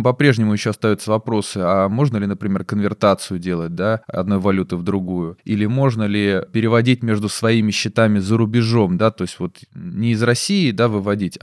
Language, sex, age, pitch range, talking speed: Russian, male, 20-39, 105-140 Hz, 175 wpm